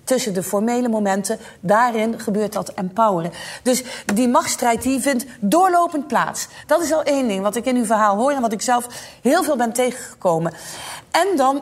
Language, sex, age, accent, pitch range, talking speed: Dutch, female, 40-59, Dutch, 220-275 Hz, 185 wpm